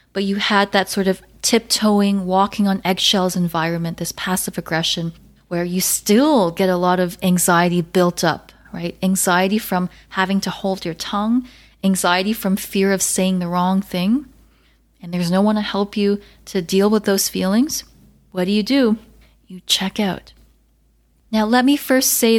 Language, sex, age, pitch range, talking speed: English, female, 20-39, 180-215 Hz, 170 wpm